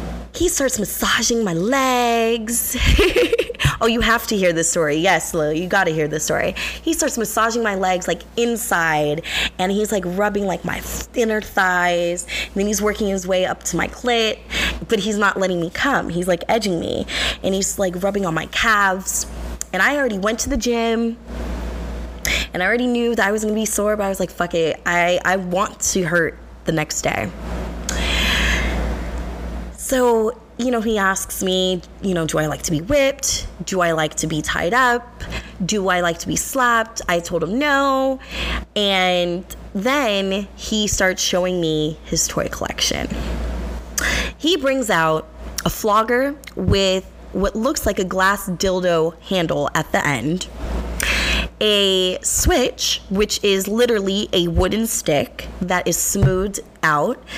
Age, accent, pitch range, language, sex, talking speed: 20-39, American, 165-225 Hz, English, female, 165 wpm